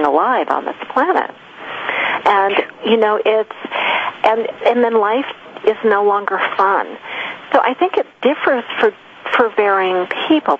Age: 50-69